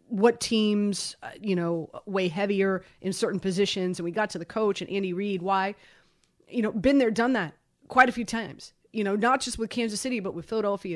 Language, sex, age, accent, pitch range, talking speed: English, female, 30-49, American, 180-220 Hz, 220 wpm